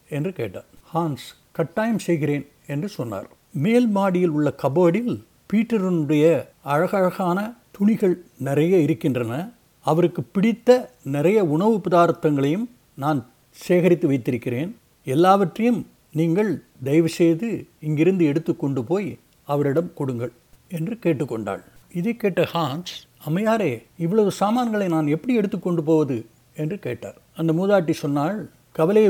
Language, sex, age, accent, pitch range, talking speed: Tamil, male, 60-79, native, 145-180 Hz, 100 wpm